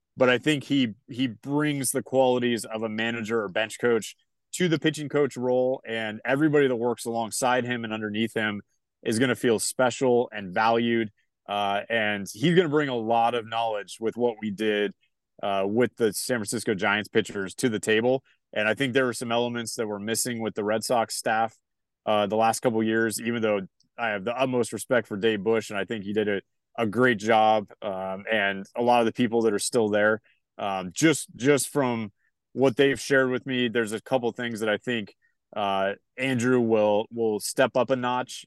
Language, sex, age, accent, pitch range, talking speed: English, male, 20-39, American, 110-125 Hz, 210 wpm